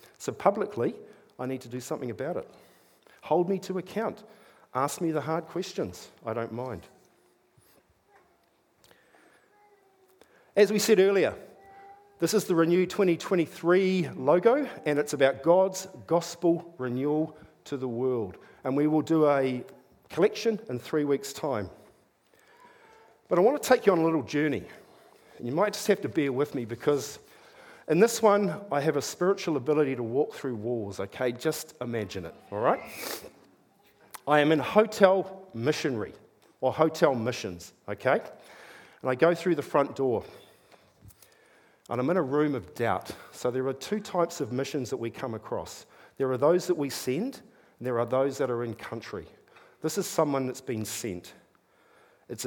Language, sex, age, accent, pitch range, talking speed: English, male, 50-69, Australian, 130-190 Hz, 160 wpm